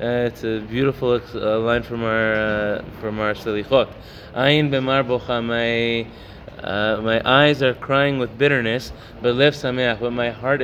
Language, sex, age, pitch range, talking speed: English, male, 20-39, 115-140 Hz, 150 wpm